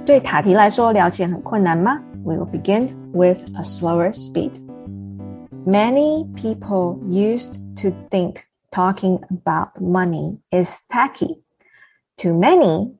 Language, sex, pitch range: Chinese, female, 170-200 Hz